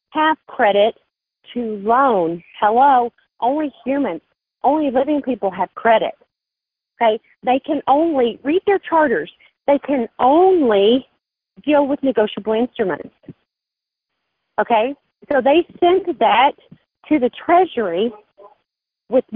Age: 40-59